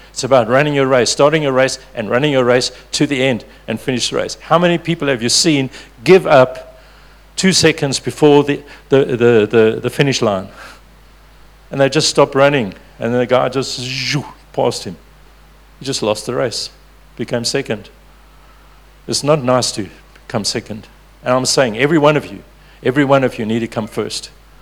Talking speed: 190 wpm